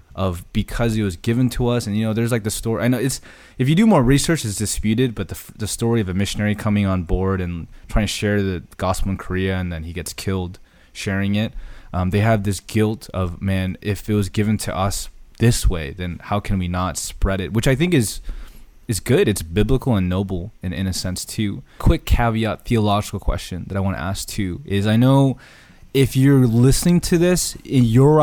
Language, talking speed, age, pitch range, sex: English, 225 wpm, 20-39, 95-115 Hz, male